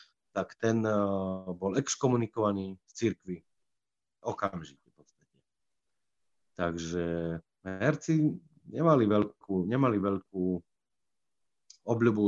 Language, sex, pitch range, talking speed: Slovak, male, 95-110 Hz, 65 wpm